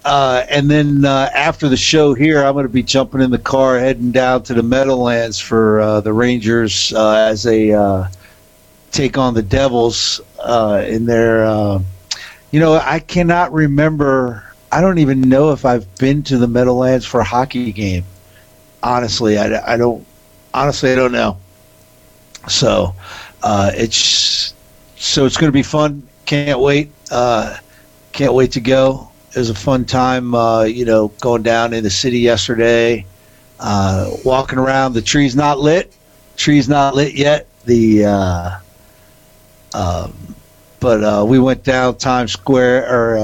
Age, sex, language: 50-69, male, English